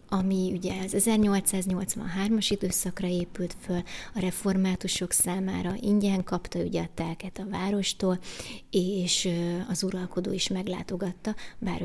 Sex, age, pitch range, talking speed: female, 20-39, 185-205 Hz, 115 wpm